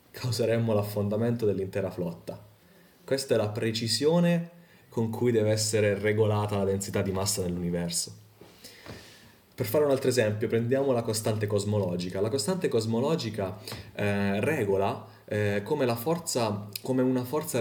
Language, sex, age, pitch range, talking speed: Italian, male, 30-49, 100-125 Hz, 135 wpm